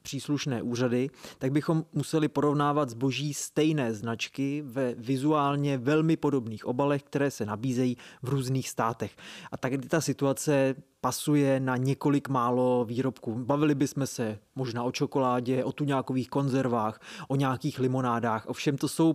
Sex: male